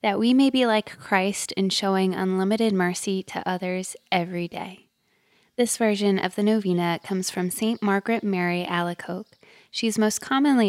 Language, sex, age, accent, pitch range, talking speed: English, female, 20-39, American, 185-220 Hz, 165 wpm